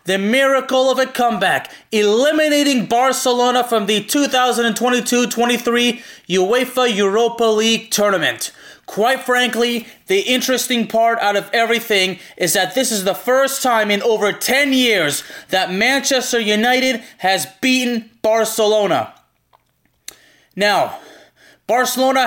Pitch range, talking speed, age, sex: 205-250 Hz, 110 wpm, 20-39, male